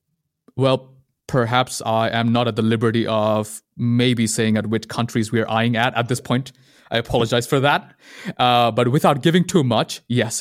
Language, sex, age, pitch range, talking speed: English, male, 20-39, 110-130 Hz, 185 wpm